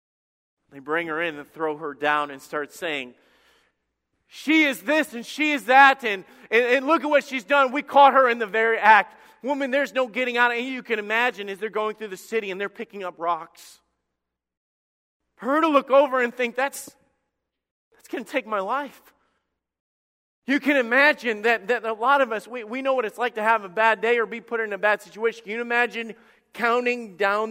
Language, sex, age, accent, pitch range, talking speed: English, male, 30-49, American, 180-260 Hz, 220 wpm